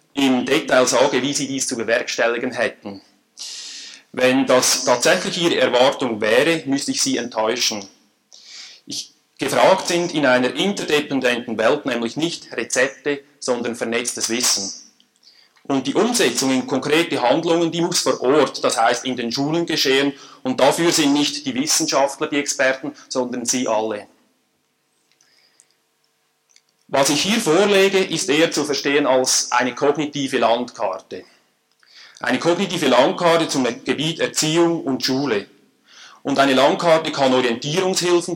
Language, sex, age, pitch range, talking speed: German, male, 30-49, 125-160 Hz, 130 wpm